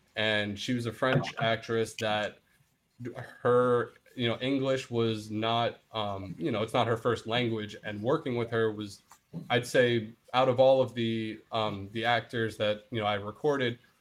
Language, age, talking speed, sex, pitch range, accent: English, 20-39, 175 wpm, male, 110-125 Hz, American